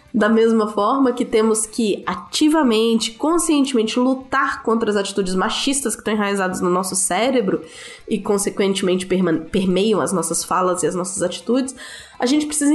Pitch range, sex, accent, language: 195-265 Hz, female, Brazilian, Portuguese